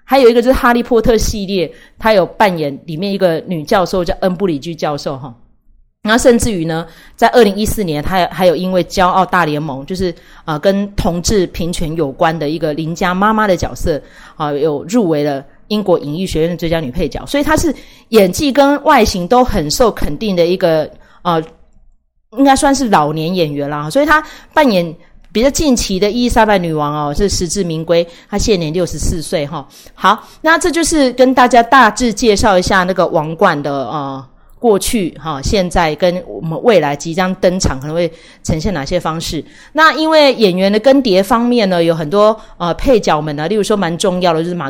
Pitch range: 160-225 Hz